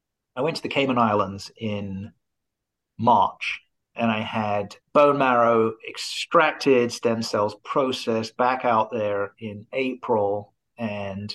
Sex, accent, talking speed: male, British, 120 wpm